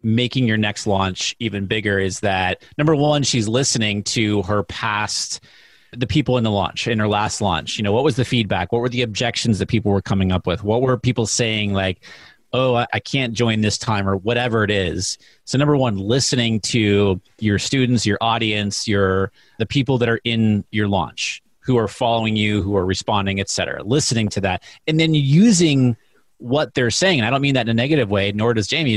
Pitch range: 105-125 Hz